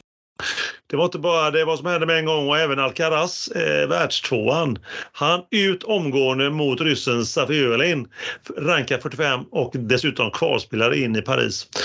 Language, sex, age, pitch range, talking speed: Swedish, male, 30-49, 120-160 Hz, 145 wpm